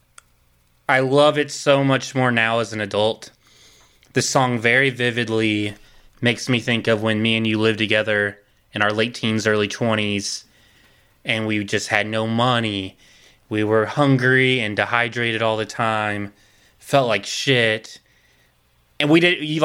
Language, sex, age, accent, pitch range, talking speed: English, male, 20-39, American, 110-130 Hz, 155 wpm